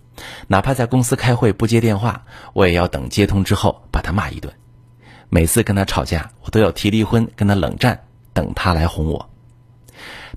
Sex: male